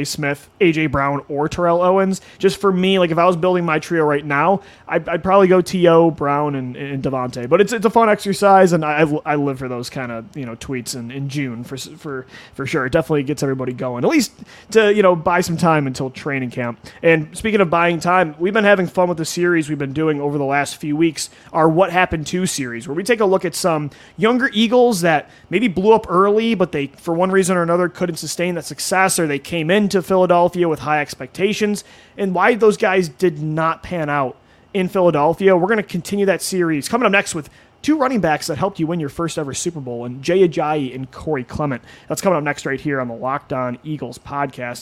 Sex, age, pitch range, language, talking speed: male, 30-49, 145-190 Hz, English, 235 wpm